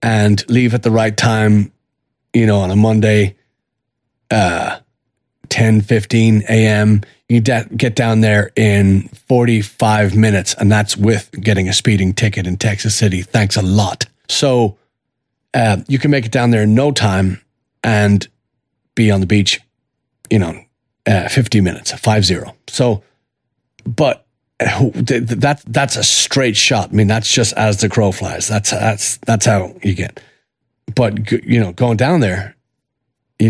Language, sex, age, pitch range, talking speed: English, male, 30-49, 105-125 Hz, 160 wpm